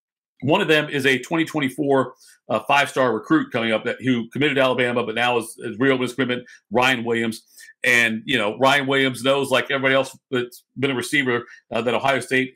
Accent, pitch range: American, 115-140 Hz